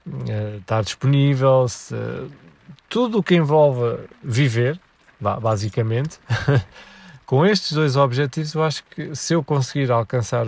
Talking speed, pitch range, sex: 115 wpm, 115-140 Hz, male